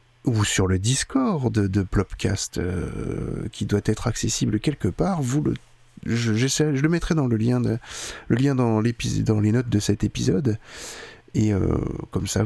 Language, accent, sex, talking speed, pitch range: French, French, male, 160 wpm, 105-130 Hz